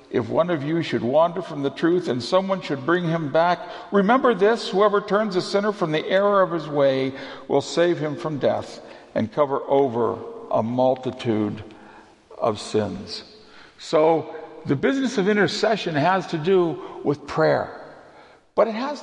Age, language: 60-79, English